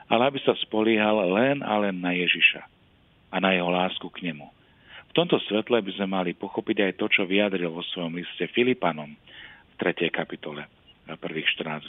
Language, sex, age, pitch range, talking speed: Slovak, male, 40-59, 85-115 Hz, 180 wpm